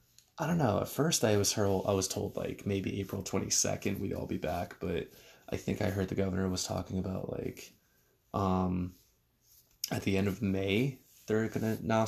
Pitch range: 95-105 Hz